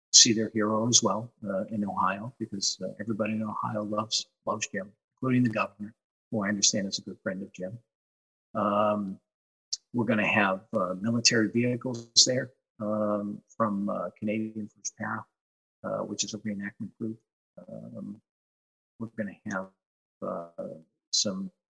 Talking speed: 155 wpm